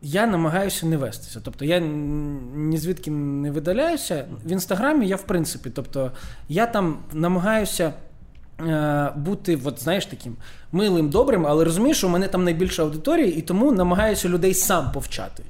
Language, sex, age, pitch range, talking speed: Ukrainian, male, 20-39, 145-185 Hz, 145 wpm